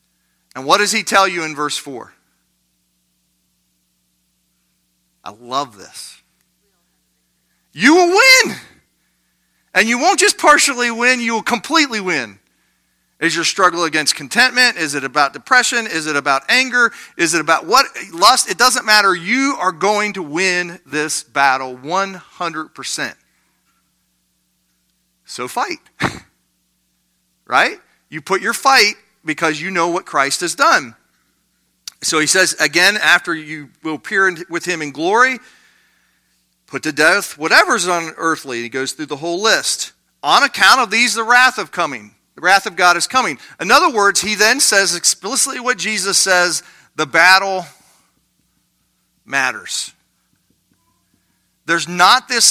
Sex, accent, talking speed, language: male, American, 140 wpm, English